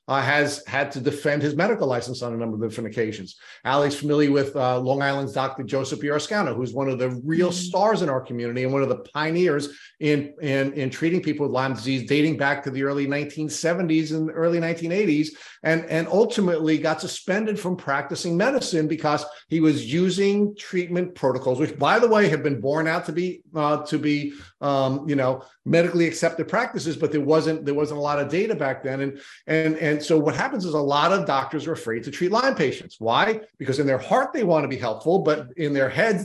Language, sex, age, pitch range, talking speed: English, male, 50-69, 135-165 Hz, 215 wpm